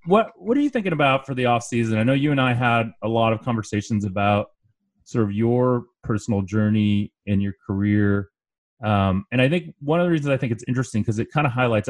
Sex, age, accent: male, 30-49, American